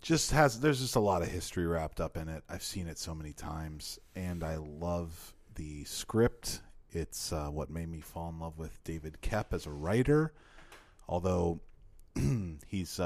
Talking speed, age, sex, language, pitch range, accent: 180 wpm, 30-49, male, English, 80-110 Hz, American